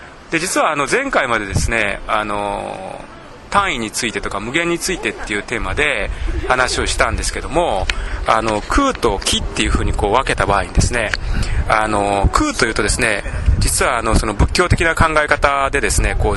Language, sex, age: Japanese, male, 20-39